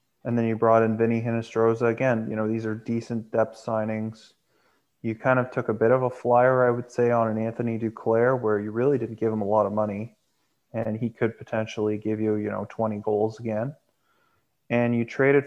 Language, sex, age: English, male, 20-39